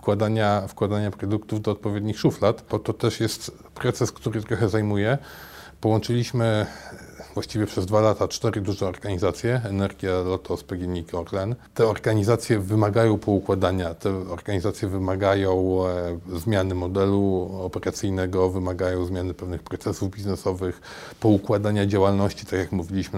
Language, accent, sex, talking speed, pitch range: Polish, native, male, 120 wpm, 95-120 Hz